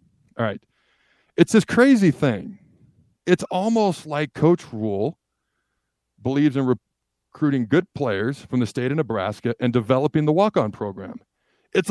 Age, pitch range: 50-69, 105-140 Hz